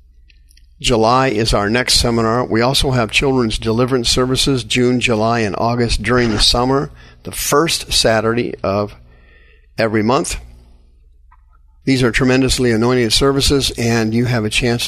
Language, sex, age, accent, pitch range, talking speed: English, male, 50-69, American, 100-125 Hz, 135 wpm